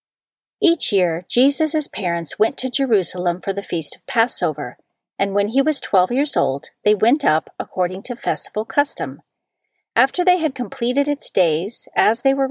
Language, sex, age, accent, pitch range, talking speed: English, female, 40-59, American, 180-260 Hz, 170 wpm